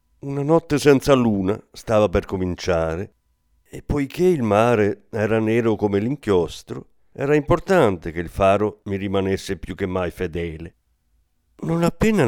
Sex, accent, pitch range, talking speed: male, native, 90-145 Hz, 135 wpm